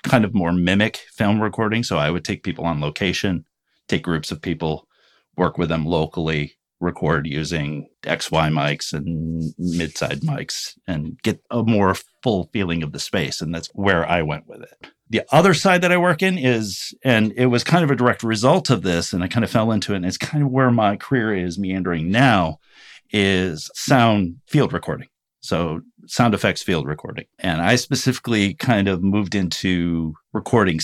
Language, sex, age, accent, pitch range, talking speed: English, male, 40-59, American, 85-115 Hz, 185 wpm